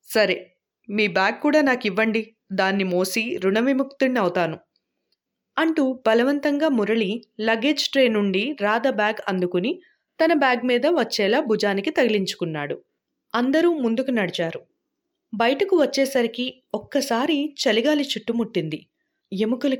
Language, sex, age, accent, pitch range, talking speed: Telugu, female, 20-39, native, 210-295 Hz, 95 wpm